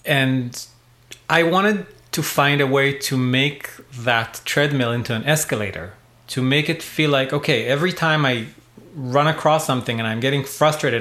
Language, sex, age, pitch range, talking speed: English, male, 30-49, 120-140 Hz, 165 wpm